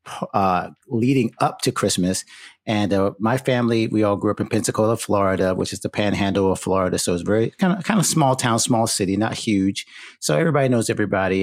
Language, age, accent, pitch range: English, 30-49, American, 95-115 Hz